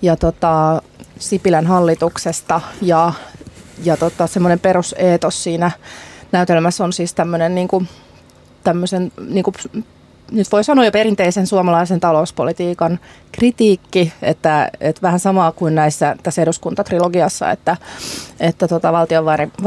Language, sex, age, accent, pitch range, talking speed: Finnish, female, 30-49, native, 165-205 Hz, 105 wpm